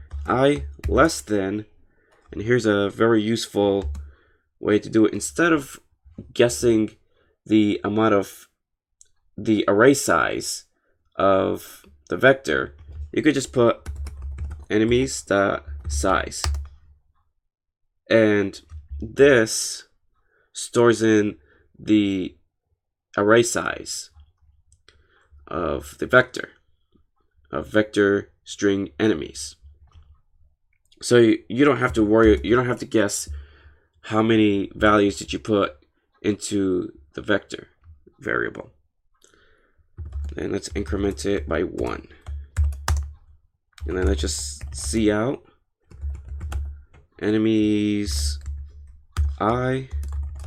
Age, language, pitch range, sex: 20-39, English, 75-105 Hz, male